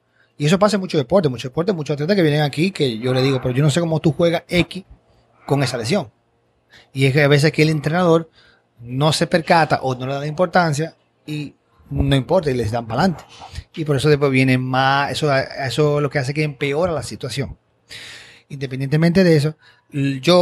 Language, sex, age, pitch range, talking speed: Spanish, male, 30-49, 135-170 Hz, 215 wpm